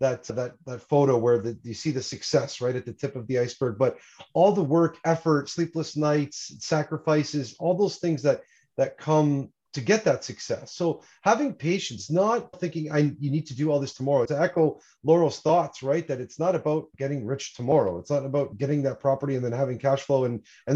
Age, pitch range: 30-49, 130-170 Hz